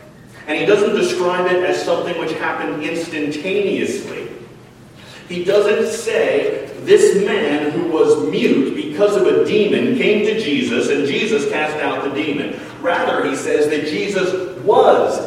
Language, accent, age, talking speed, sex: English, American, 40-59, 145 wpm, male